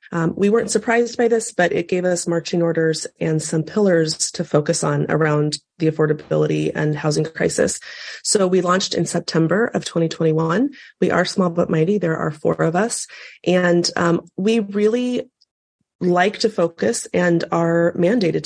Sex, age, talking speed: female, 30-49, 165 wpm